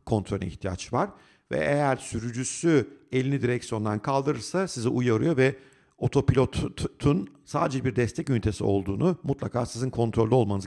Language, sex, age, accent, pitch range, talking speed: Turkish, male, 50-69, native, 100-145 Hz, 125 wpm